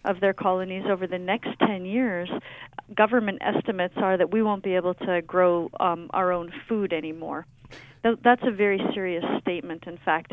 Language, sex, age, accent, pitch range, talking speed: English, female, 40-59, American, 180-215 Hz, 175 wpm